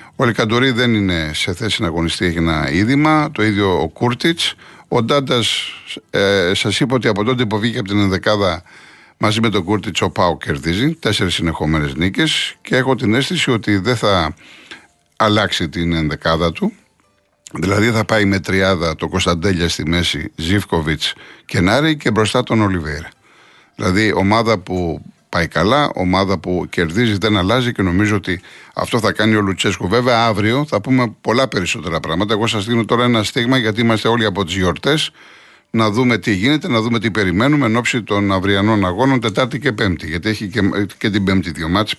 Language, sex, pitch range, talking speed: Greek, male, 95-125 Hz, 175 wpm